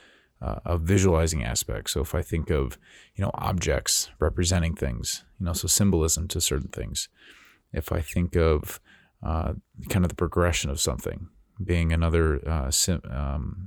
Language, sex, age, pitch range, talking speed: English, male, 30-49, 80-90 Hz, 160 wpm